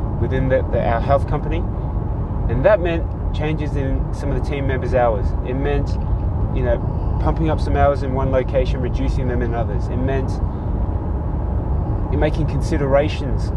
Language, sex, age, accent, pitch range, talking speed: English, male, 20-39, Australian, 90-125 Hz, 160 wpm